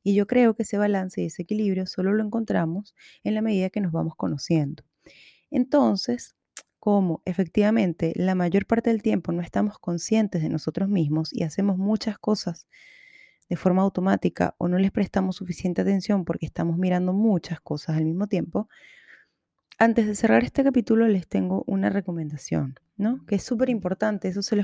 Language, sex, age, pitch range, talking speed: Spanish, female, 20-39, 170-210 Hz, 175 wpm